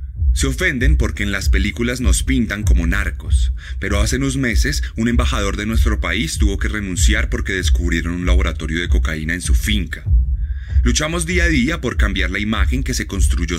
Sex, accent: male, Colombian